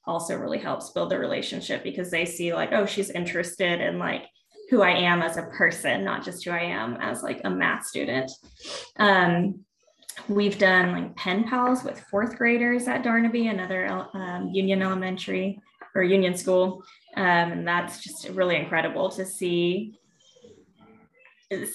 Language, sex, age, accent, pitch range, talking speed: English, female, 20-39, American, 180-245 Hz, 155 wpm